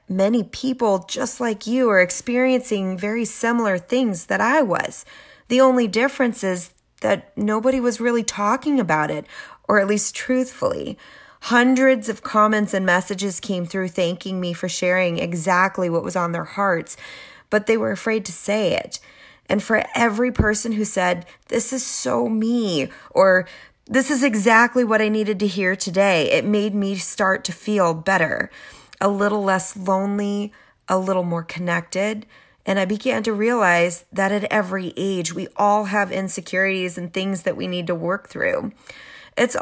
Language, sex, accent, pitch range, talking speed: English, female, American, 185-225 Hz, 165 wpm